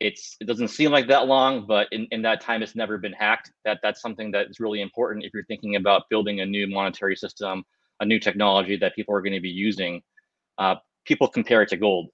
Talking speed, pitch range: 230 wpm, 100-120 Hz